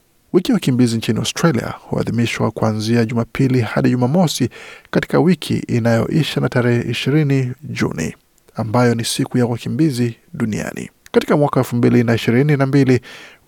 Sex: male